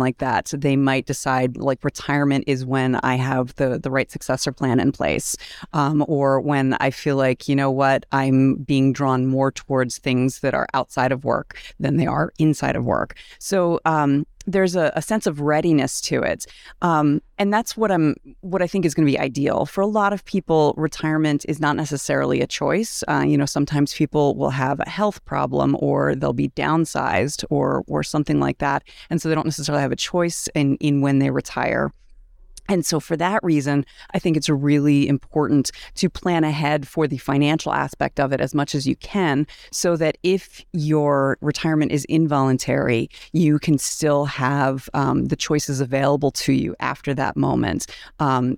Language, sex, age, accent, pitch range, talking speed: English, female, 30-49, American, 135-160 Hz, 195 wpm